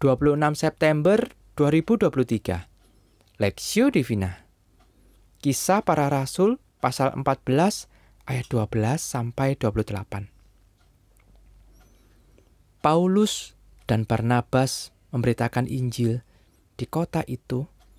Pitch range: 110-145 Hz